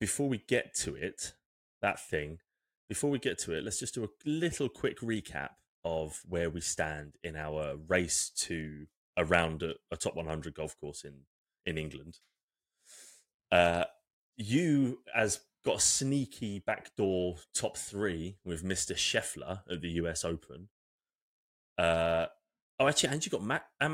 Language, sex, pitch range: English, male, 80-105 Hz